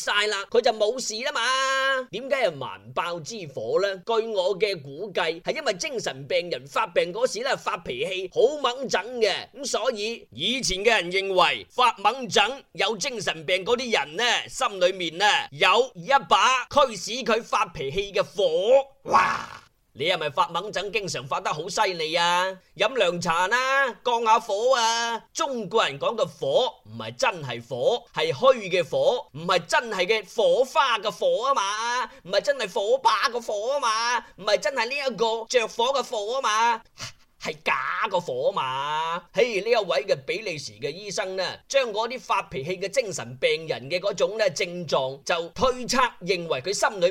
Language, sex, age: Chinese, male, 20-39